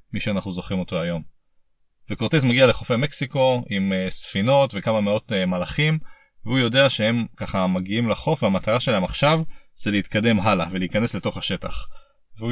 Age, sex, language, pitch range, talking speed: 30-49, male, Hebrew, 105-155 Hz, 145 wpm